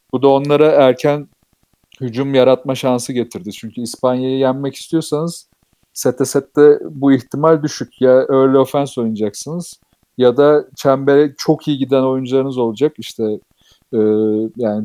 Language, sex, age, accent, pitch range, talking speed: Turkish, male, 40-59, native, 125-150 Hz, 130 wpm